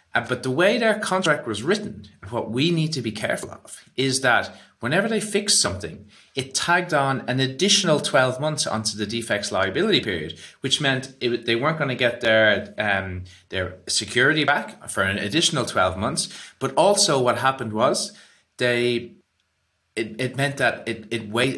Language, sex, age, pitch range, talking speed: English, male, 30-49, 110-155 Hz, 170 wpm